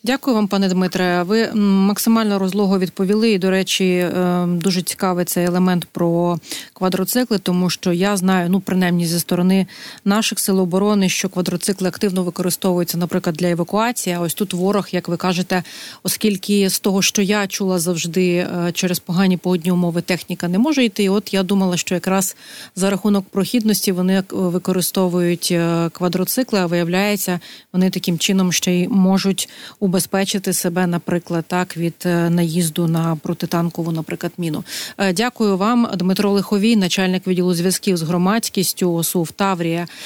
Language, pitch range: Ukrainian, 175-195 Hz